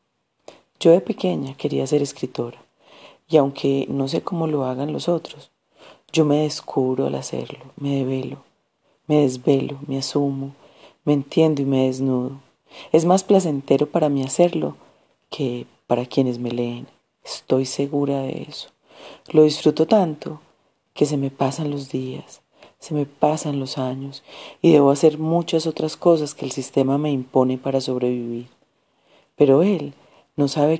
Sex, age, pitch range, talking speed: female, 40-59, 135-160 Hz, 150 wpm